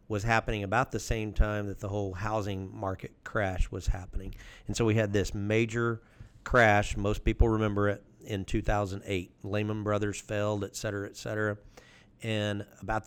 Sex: male